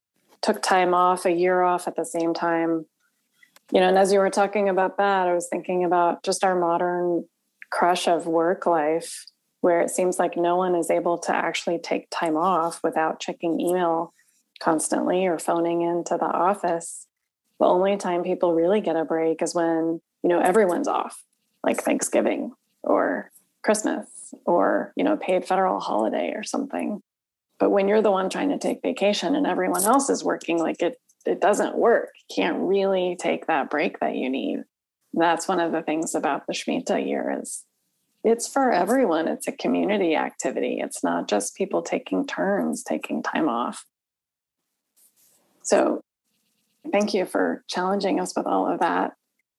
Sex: female